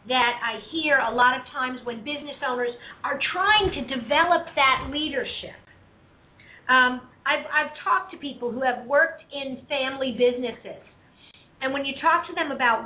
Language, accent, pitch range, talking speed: English, American, 235-285 Hz, 165 wpm